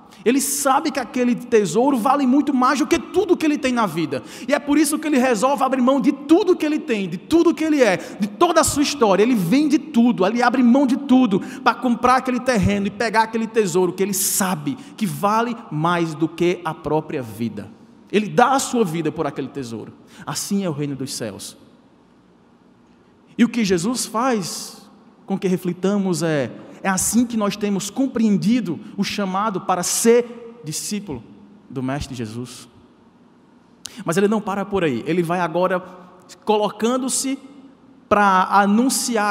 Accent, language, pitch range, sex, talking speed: Brazilian, Portuguese, 185-255 Hz, male, 175 wpm